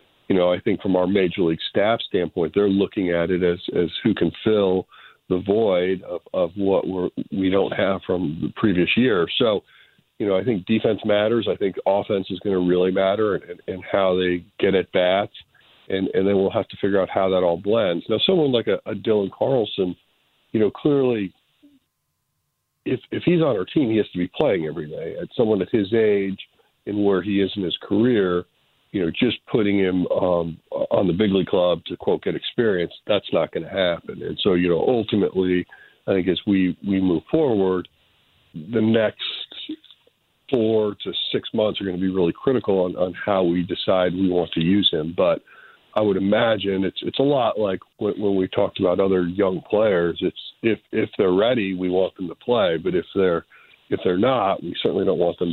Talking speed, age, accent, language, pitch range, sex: 210 wpm, 50-69, American, English, 90-105 Hz, male